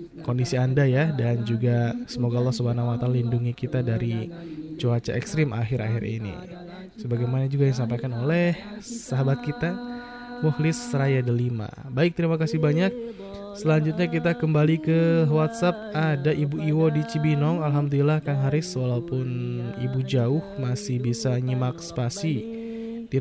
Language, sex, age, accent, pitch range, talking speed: Indonesian, male, 20-39, native, 125-170 Hz, 130 wpm